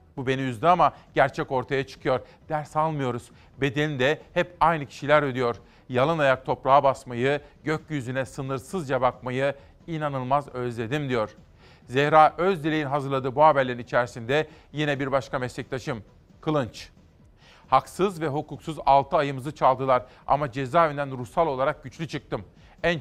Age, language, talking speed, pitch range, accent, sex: 40-59, Turkish, 130 wpm, 130-155 Hz, native, male